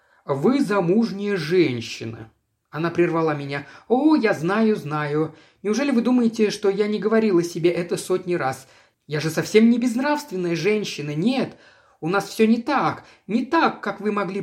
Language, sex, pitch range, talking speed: Russian, male, 155-220 Hz, 160 wpm